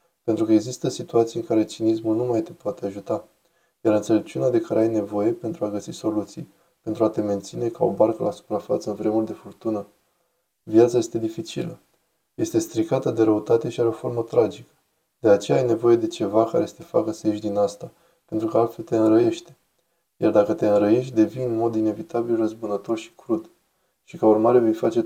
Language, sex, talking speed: Romanian, male, 195 wpm